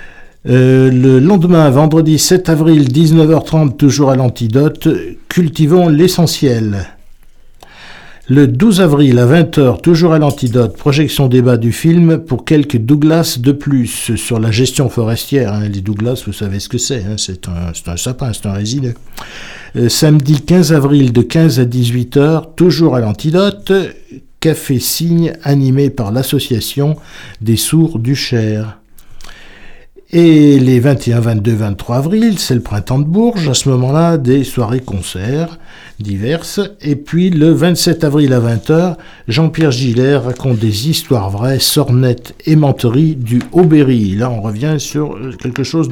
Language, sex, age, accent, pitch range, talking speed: French, male, 60-79, French, 115-155 Hz, 145 wpm